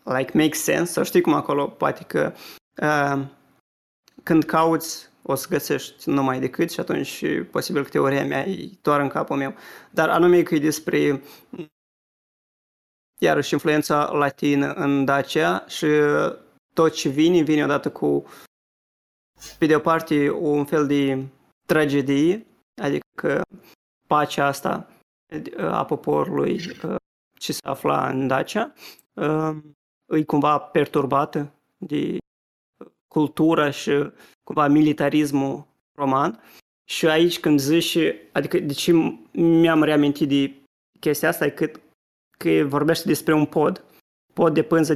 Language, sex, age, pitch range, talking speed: Romanian, male, 20-39, 145-165 Hz, 130 wpm